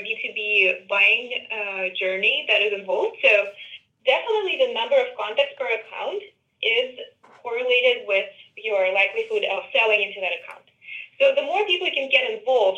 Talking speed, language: 155 wpm, English